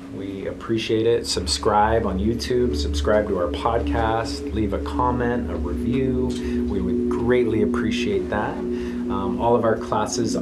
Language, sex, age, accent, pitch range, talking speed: English, male, 30-49, American, 80-125 Hz, 145 wpm